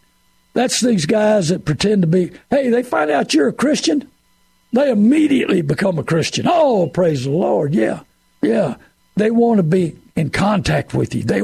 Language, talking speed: English, 180 wpm